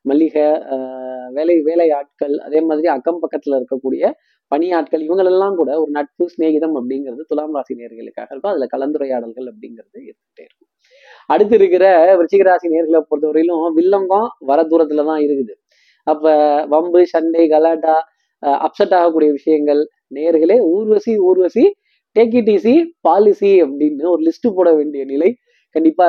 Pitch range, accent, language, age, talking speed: 145-180 Hz, native, Tamil, 20-39, 120 wpm